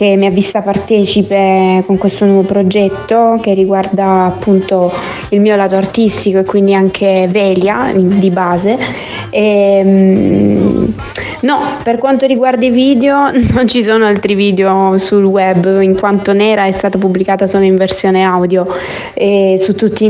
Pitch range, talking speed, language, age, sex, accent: 195-225 Hz, 150 wpm, Italian, 20-39, female, native